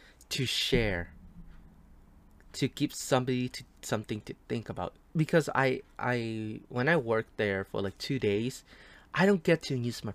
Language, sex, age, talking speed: English, male, 20-39, 155 wpm